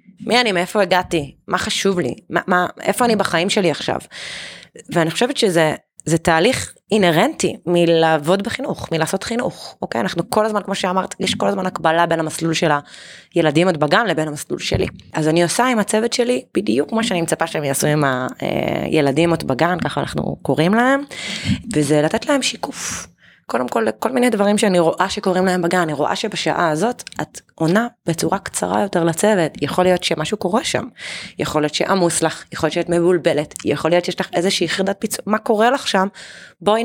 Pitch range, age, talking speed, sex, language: 160-205 Hz, 20-39, 180 wpm, female, Hebrew